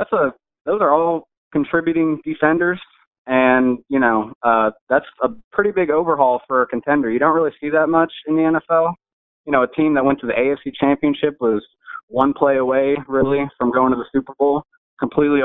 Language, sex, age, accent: English, male, 20-39, American